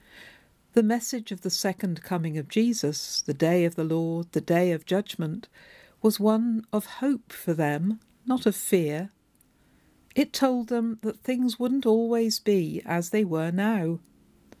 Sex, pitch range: female, 170-225 Hz